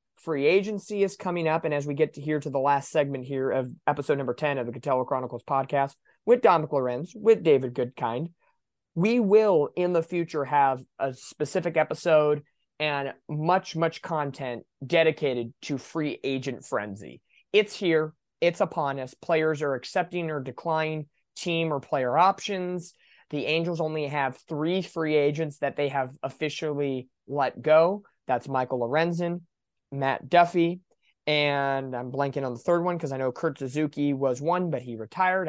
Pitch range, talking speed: 135-175 Hz, 165 wpm